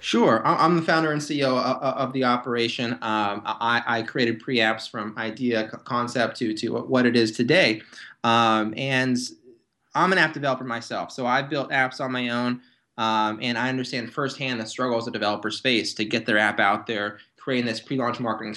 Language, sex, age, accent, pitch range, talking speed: English, male, 20-39, American, 110-130 Hz, 185 wpm